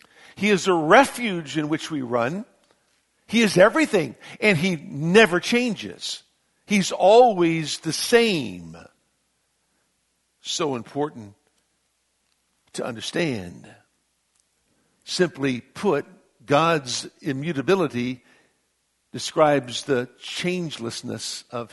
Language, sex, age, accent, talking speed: English, male, 60-79, American, 85 wpm